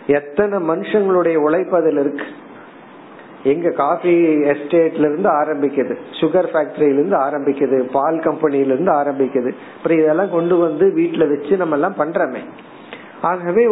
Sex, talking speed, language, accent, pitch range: male, 120 wpm, Tamil, native, 150-200 Hz